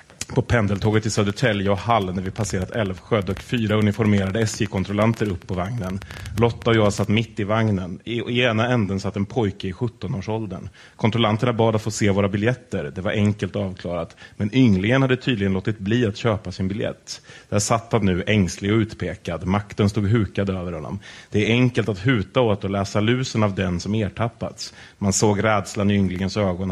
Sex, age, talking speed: male, 30-49, 190 wpm